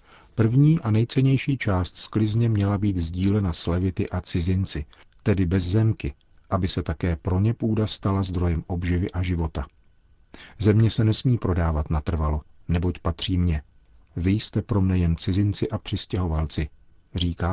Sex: male